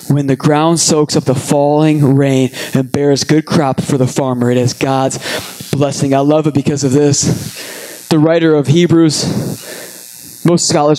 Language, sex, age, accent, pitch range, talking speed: English, male, 20-39, American, 145-200 Hz, 170 wpm